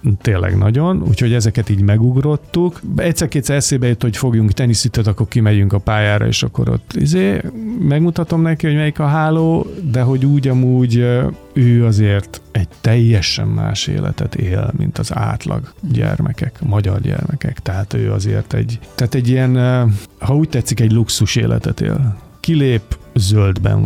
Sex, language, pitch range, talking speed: male, Hungarian, 105-130 Hz, 150 wpm